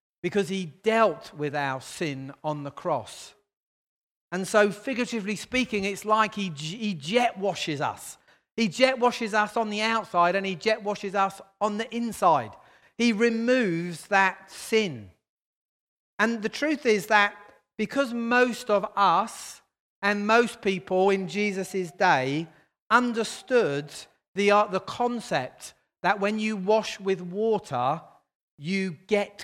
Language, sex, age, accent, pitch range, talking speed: English, male, 40-59, British, 165-220 Hz, 135 wpm